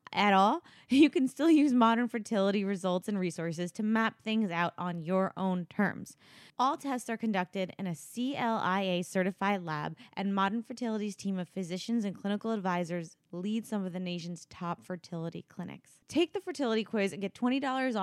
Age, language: 20-39, English